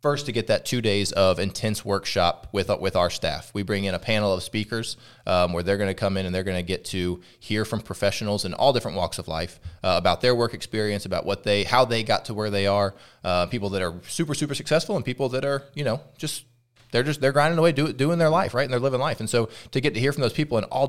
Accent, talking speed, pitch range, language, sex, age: American, 280 wpm, 95-120 Hz, English, male, 20-39